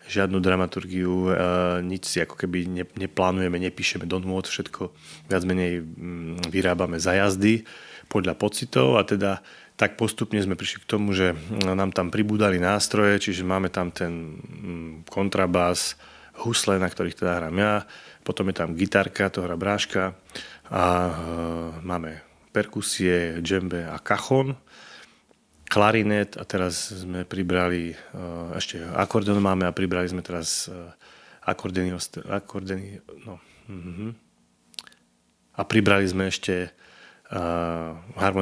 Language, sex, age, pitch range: Slovak, male, 30-49, 85-100 Hz